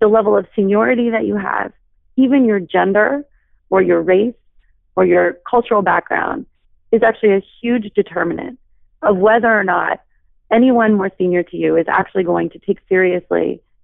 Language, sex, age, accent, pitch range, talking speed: English, female, 30-49, American, 190-240 Hz, 160 wpm